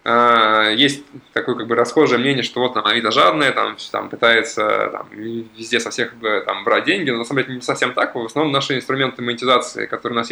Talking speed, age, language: 210 wpm, 20-39, Russian